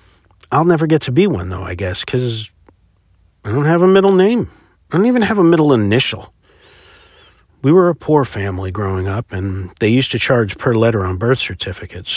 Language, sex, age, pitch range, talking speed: English, male, 50-69, 95-150 Hz, 195 wpm